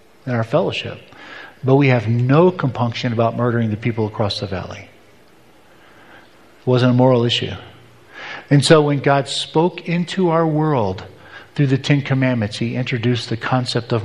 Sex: male